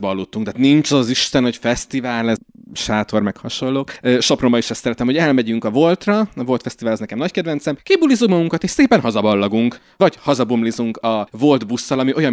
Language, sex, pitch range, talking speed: Hungarian, male, 110-150 Hz, 185 wpm